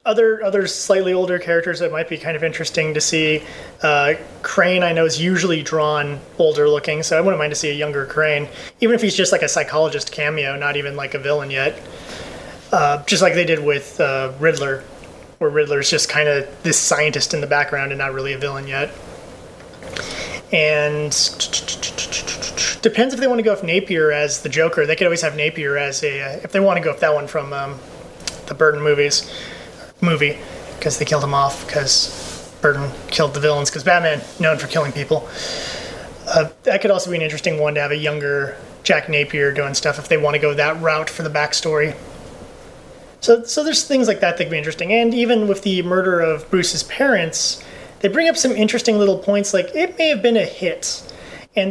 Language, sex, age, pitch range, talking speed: English, male, 20-39, 150-195 Hz, 205 wpm